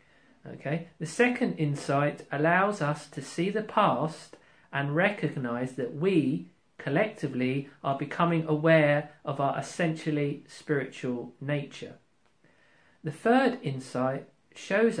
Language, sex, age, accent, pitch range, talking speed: English, male, 40-59, British, 140-180 Hz, 110 wpm